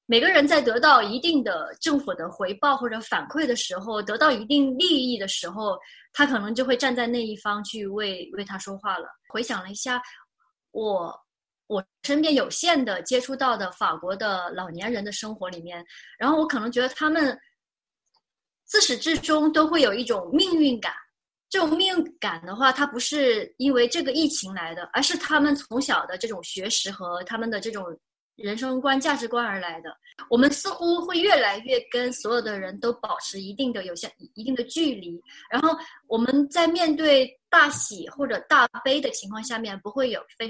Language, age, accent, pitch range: Chinese, 20-39, native, 210-300 Hz